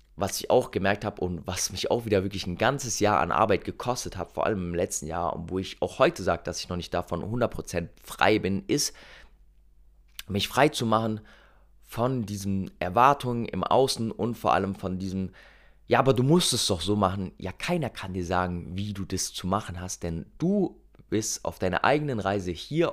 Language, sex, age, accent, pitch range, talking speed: German, male, 20-39, German, 90-110 Hz, 205 wpm